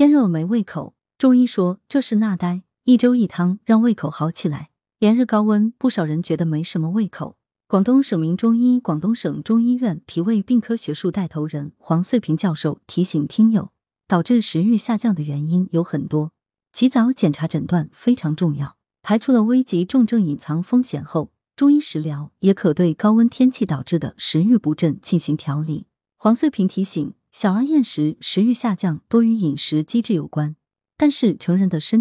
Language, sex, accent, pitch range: Chinese, female, native, 160-230 Hz